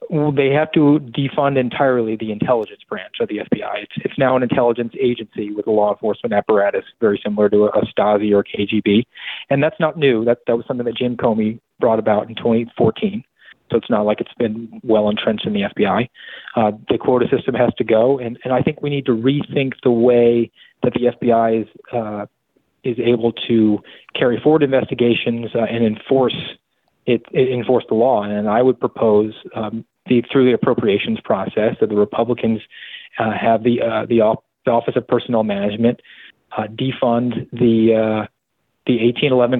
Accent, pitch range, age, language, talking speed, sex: American, 110-125 Hz, 30-49, English, 185 wpm, male